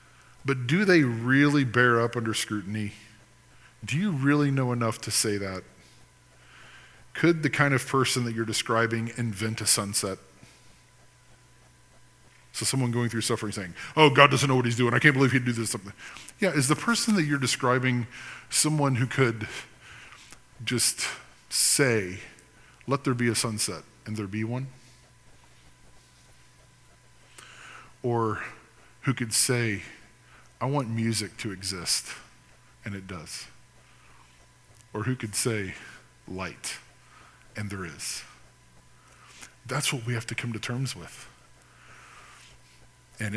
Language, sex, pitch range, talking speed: English, male, 110-130 Hz, 135 wpm